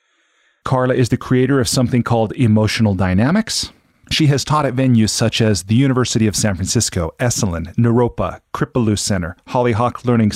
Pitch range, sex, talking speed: 100-125 Hz, male, 155 wpm